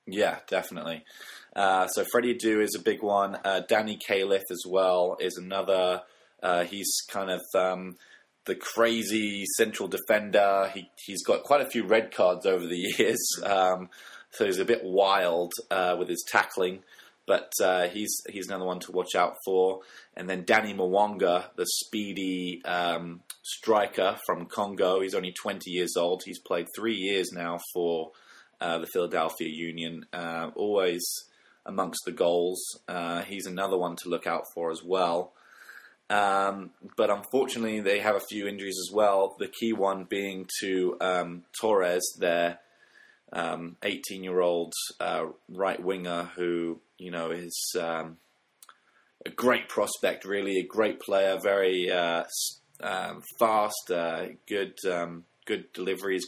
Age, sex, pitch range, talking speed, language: 20-39, male, 85-100 Hz, 150 wpm, English